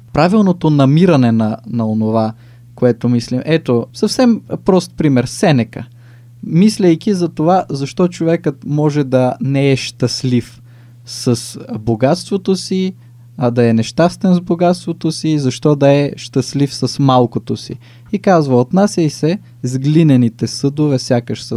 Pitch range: 120-150 Hz